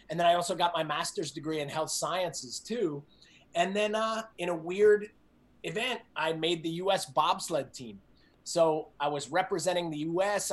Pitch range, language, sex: 145-175 Hz, Greek, male